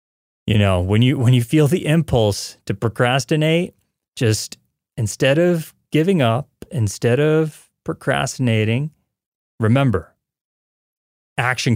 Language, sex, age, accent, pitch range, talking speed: English, male, 30-49, American, 105-145 Hz, 105 wpm